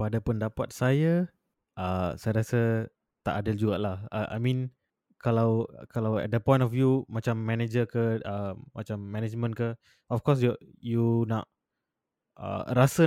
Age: 20-39